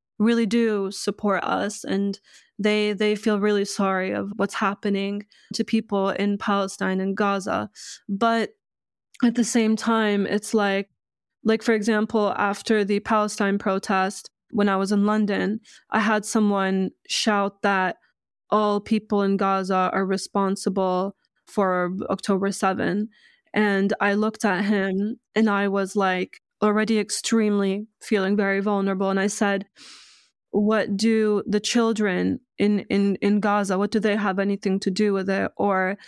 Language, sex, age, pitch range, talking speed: English, female, 20-39, 195-220 Hz, 145 wpm